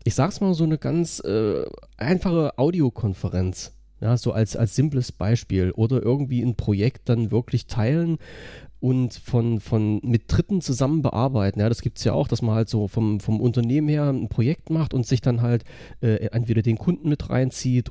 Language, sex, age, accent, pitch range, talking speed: German, male, 40-59, German, 110-135 Hz, 190 wpm